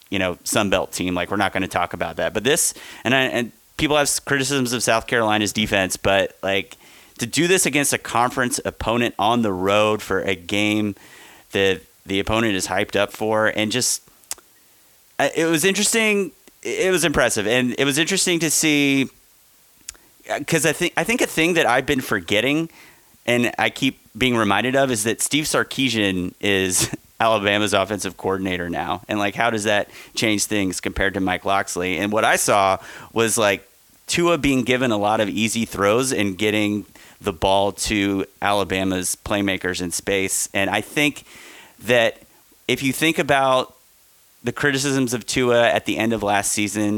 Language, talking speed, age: English, 175 wpm, 30-49